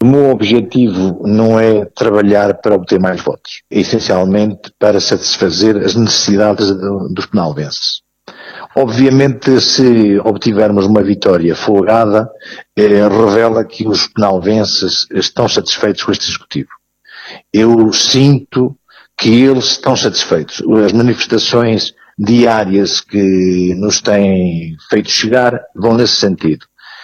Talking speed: 115 wpm